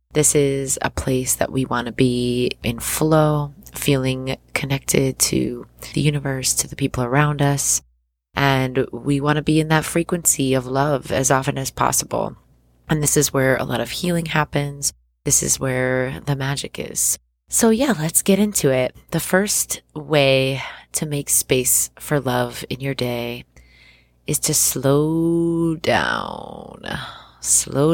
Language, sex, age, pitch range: English, female, 20-39, 125-150 Hz